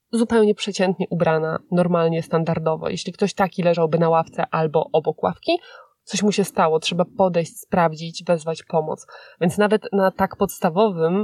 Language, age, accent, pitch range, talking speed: Polish, 20-39, native, 165-210 Hz, 150 wpm